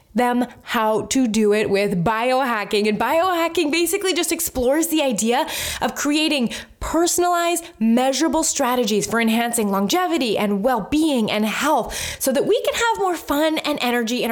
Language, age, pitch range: English, 20-39, 220-310 Hz